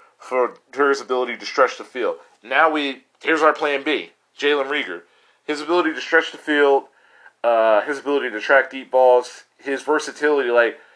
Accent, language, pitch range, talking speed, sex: American, English, 125-160 Hz, 170 wpm, male